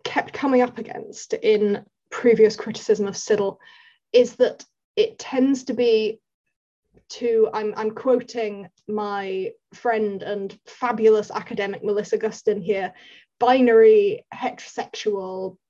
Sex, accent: female, British